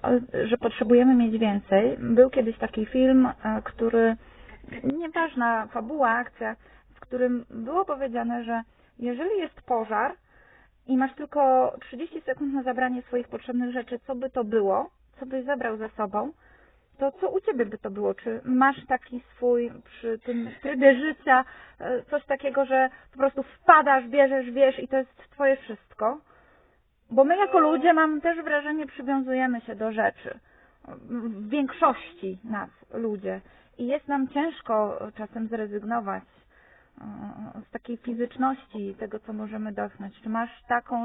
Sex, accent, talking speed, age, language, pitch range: female, native, 145 wpm, 30-49, Polish, 225-265 Hz